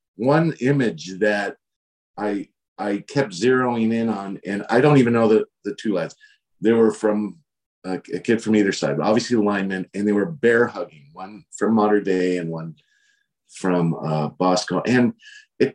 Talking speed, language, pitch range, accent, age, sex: 175 wpm, English, 105-145 Hz, American, 50-69, male